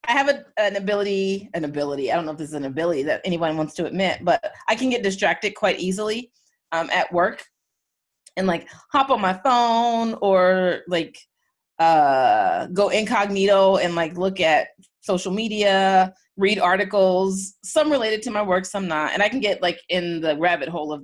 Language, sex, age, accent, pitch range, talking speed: English, female, 30-49, American, 170-205 Hz, 185 wpm